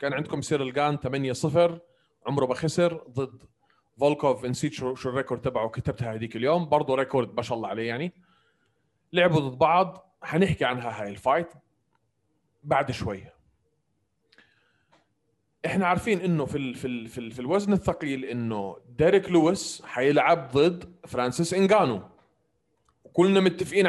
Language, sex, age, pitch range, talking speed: Arabic, male, 30-49, 130-180 Hz, 130 wpm